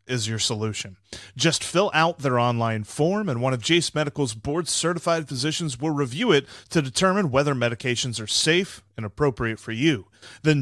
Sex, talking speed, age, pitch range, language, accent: male, 175 wpm, 30-49, 115-160 Hz, English, American